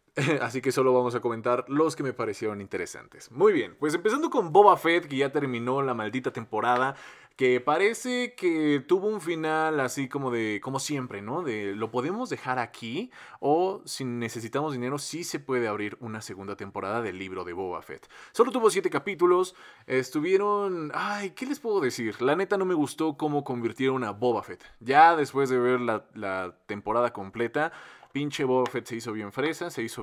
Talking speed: 190 wpm